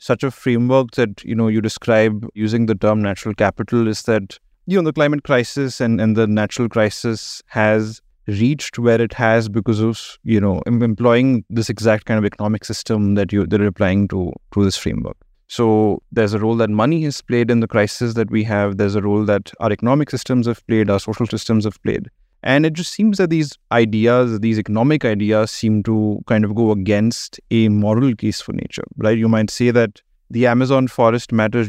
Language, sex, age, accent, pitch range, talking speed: English, male, 30-49, Indian, 105-120 Hz, 205 wpm